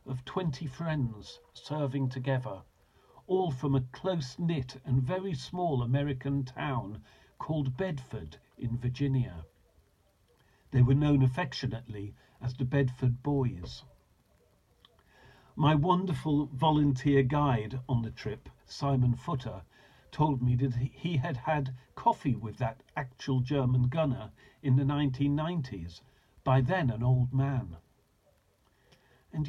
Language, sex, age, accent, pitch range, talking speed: English, male, 50-69, British, 125-150 Hz, 115 wpm